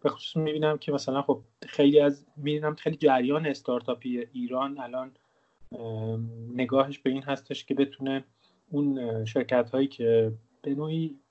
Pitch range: 125-155 Hz